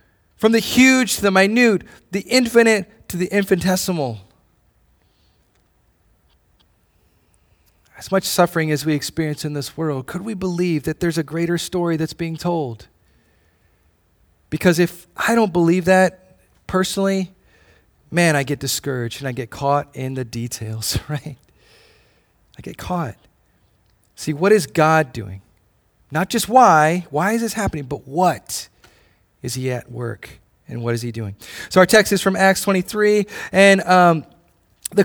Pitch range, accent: 135-195 Hz, American